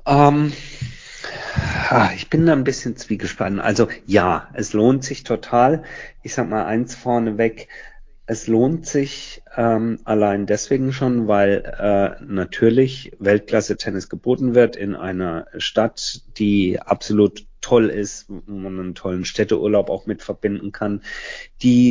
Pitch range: 100-120 Hz